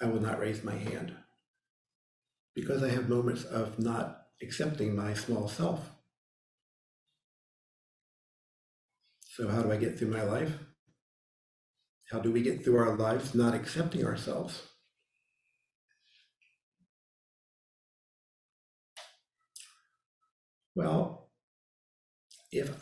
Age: 50-69